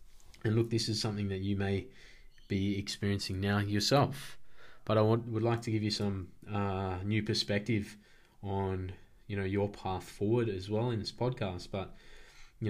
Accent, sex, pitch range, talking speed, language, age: Australian, male, 95-115 Hz, 175 wpm, English, 20-39